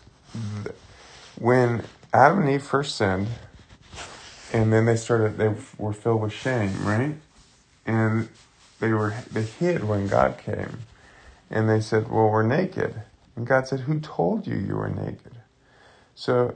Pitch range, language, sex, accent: 105-130 Hz, English, male, American